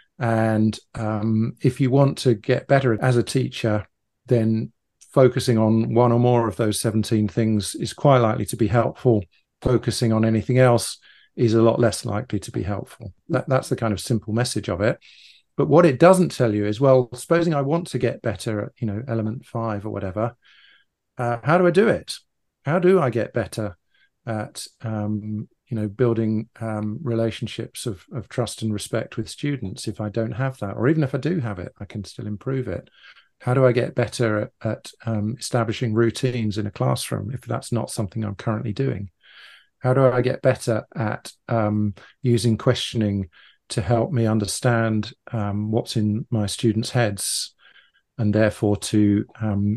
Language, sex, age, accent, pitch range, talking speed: English, male, 40-59, British, 105-125 Hz, 185 wpm